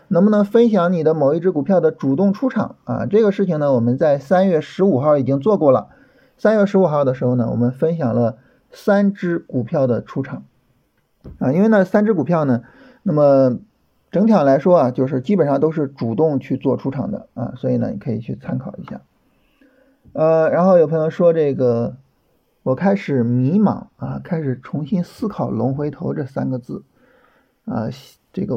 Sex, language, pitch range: male, Chinese, 140-210 Hz